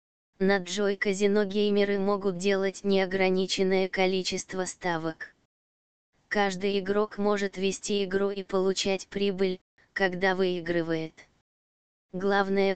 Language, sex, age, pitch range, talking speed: Russian, female, 20-39, 180-200 Hz, 95 wpm